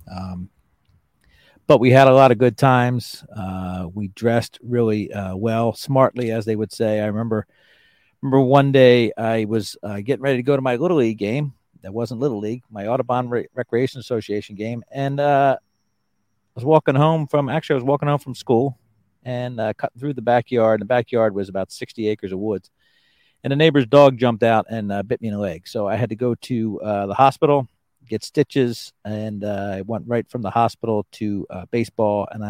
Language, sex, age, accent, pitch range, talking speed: English, male, 40-59, American, 105-130 Hz, 205 wpm